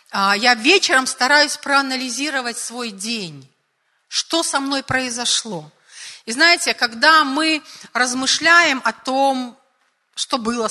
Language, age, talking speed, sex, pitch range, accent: Russian, 40-59, 105 wpm, female, 200-260 Hz, native